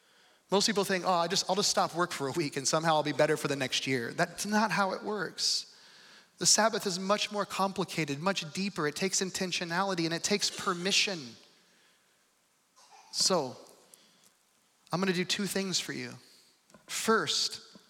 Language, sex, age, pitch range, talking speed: English, male, 30-49, 155-205 Hz, 165 wpm